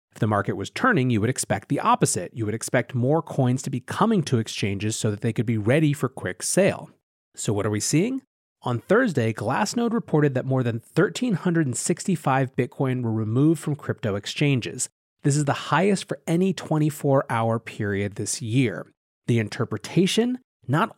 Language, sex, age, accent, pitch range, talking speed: English, male, 30-49, American, 115-150 Hz, 175 wpm